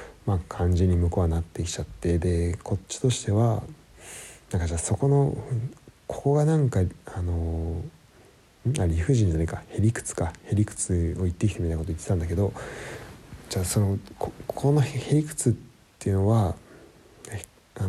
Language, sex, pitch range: Japanese, male, 85-115 Hz